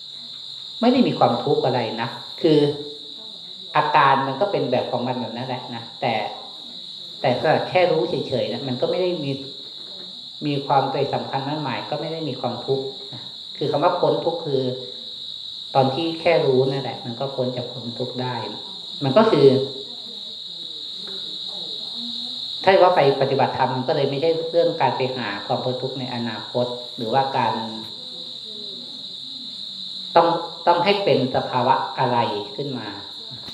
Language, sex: Thai, female